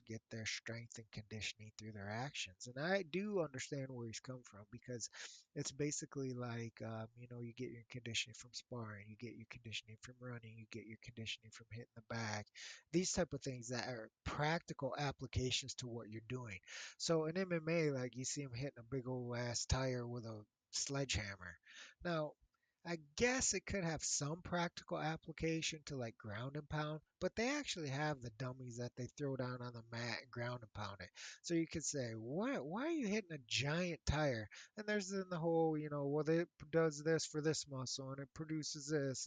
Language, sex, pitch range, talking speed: English, male, 120-160 Hz, 205 wpm